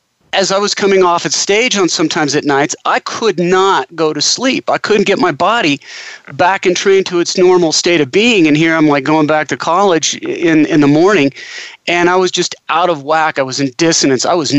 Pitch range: 160-210 Hz